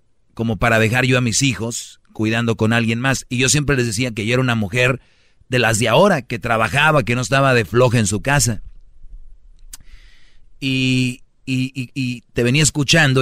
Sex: male